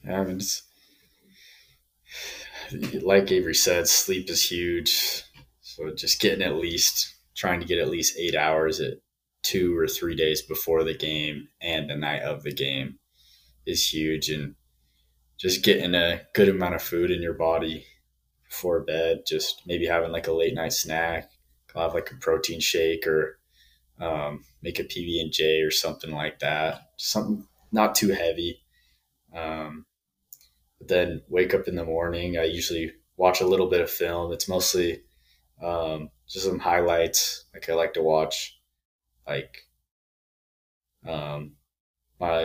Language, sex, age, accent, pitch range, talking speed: English, male, 20-39, American, 75-90 Hz, 140 wpm